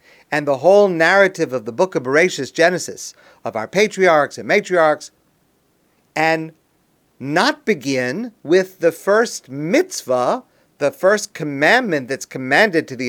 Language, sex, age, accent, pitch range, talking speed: English, male, 50-69, American, 165-225 Hz, 135 wpm